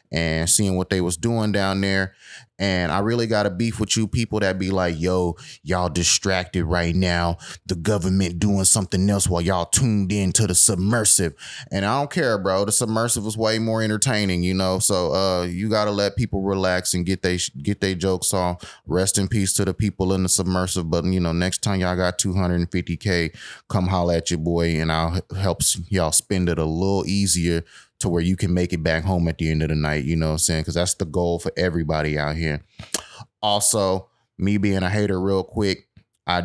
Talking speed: 210 wpm